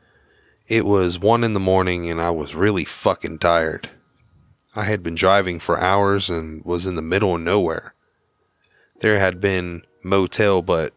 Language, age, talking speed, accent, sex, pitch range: English, 30-49, 165 wpm, American, male, 85-105 Hz